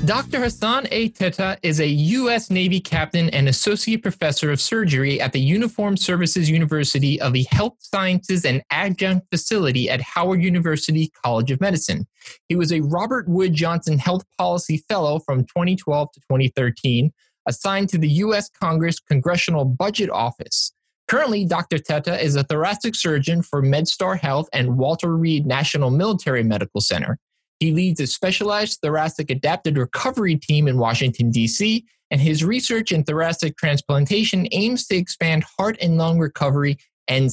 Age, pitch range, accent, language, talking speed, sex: 30-49, 145-190 Hz, American, English, 155 wpm, male